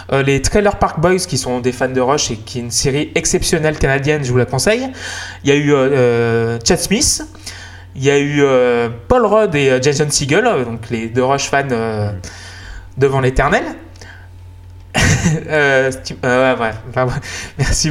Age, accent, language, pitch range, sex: 20-39, French, Japanese, 120-170 Hz, male